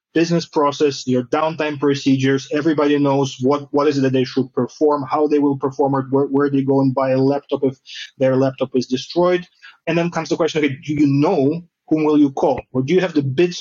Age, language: 30-49, English